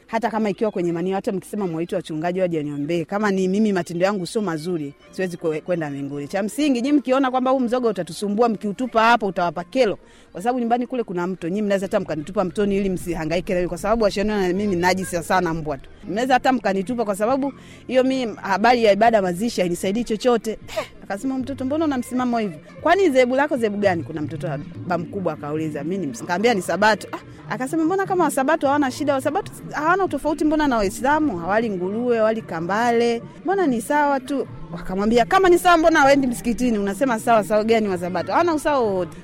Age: 30-49